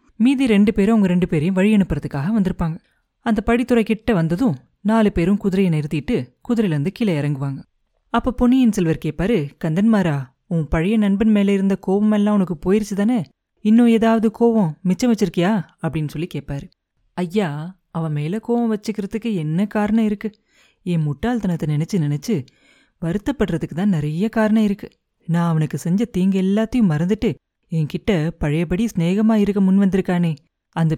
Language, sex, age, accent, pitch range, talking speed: Tamil, female, 30-49, native, 165-215 Hz, 140 wpm